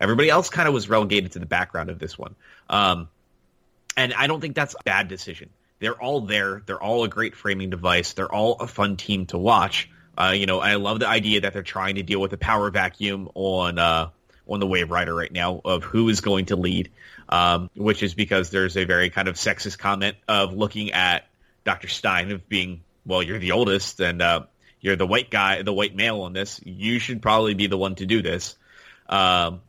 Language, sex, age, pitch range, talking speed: English, male, 30-49, 90-110 Hz, 220 wpm